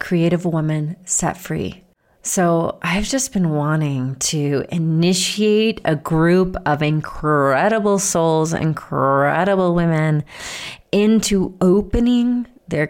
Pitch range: 155-190 Hz